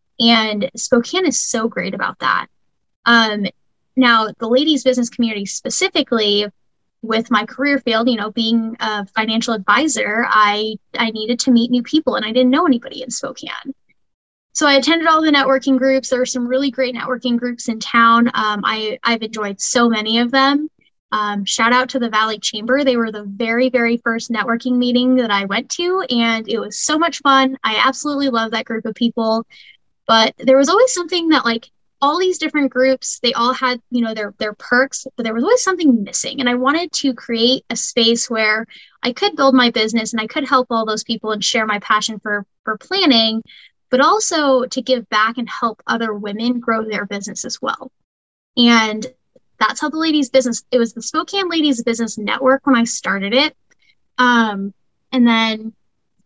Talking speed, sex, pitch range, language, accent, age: 190 wpm, female, 225-265 Hz, English, American, 10-29